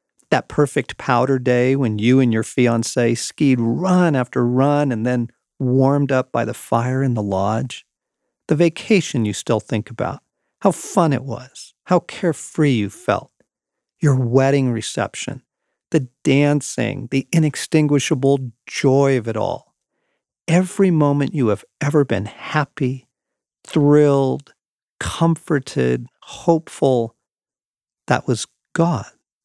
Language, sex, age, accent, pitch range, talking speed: English, male, 50-69, American, 115-145 Hz, 125 wpm